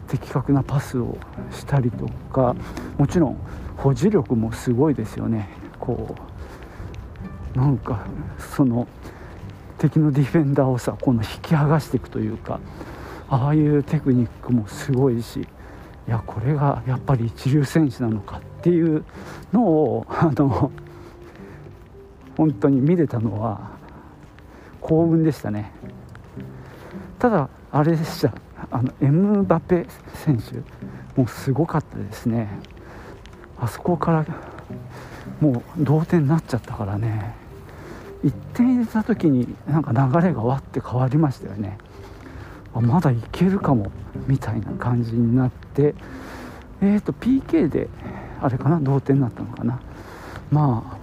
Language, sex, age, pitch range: Japanese, male, 50-69, 110-150 Hz